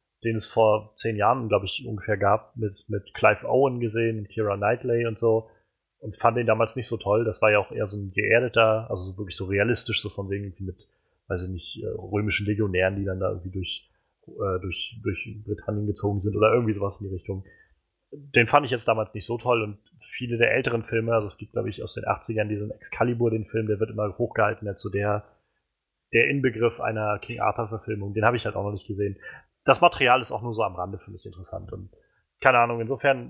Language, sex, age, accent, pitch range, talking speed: German, male, 30-49, German, 105-120 Hz, 225 wpm